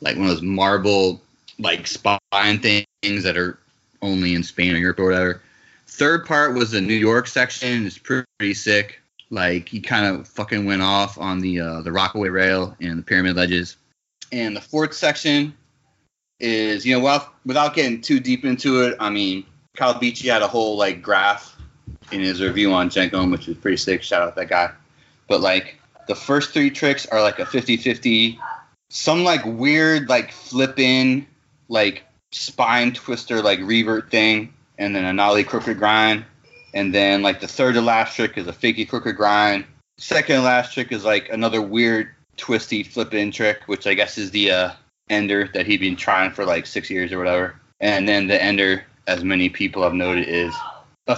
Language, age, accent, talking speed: English, 30-49, American, 190 wpm